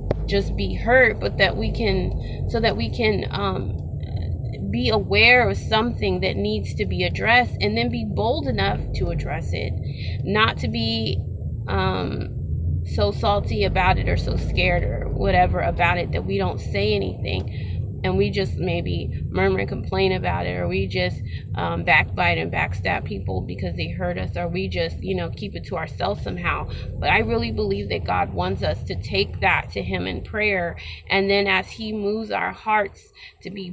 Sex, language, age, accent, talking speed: female, English, 20-39, American, 185 wpm